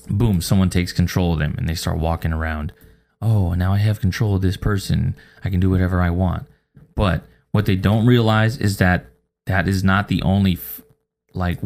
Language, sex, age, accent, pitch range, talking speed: English, male, 20-39, American, 90-110 Hz, 195 wpm